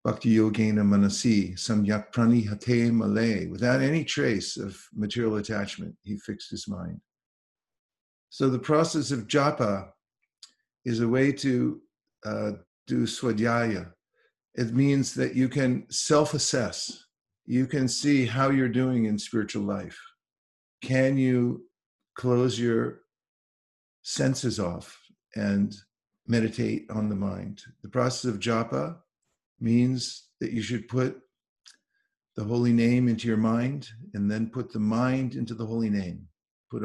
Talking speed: 120 wpm